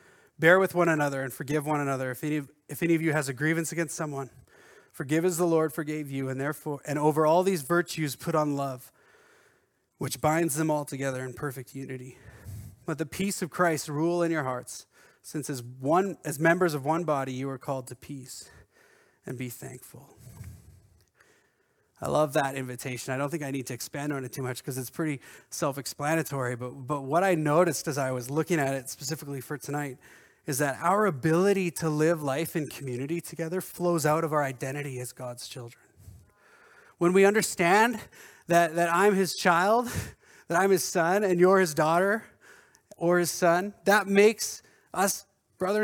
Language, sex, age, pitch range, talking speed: English, male, 30-49, 135-180 Hz, 185 wpm